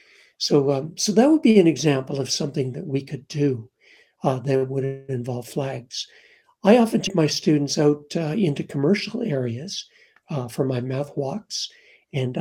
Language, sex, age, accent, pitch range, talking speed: English, male, 60-79, American, 145-200 Hz, 170 wpm